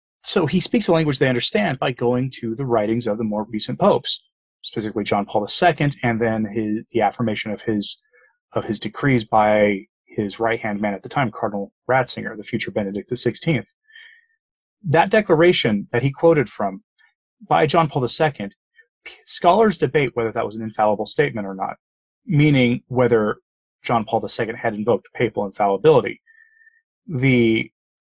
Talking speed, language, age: 155 wpm, English, 30-49